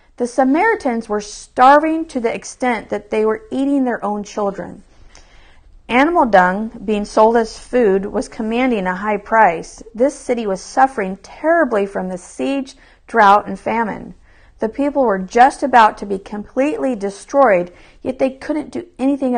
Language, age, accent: English, 50-69, American